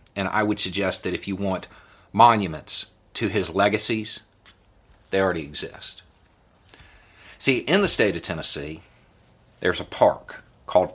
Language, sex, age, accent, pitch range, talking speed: English, male, 50-69, American, 85-105 Hz, 135 wpm